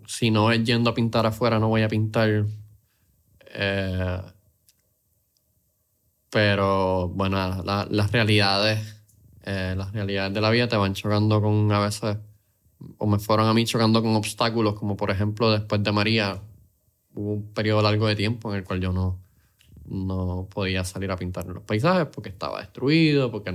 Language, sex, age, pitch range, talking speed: Spanish, male, 20-39, 95-110 Hz, 170 wpm